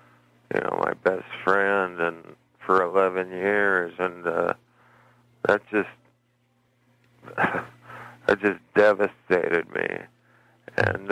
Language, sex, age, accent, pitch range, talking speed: English, male, 50-69, American, 100-115 Hz, 95 wpm